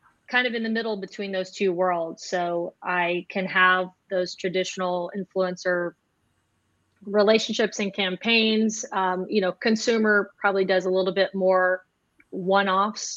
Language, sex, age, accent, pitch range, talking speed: English, female, 30-49, American, 170-200 Hz, 135 wpm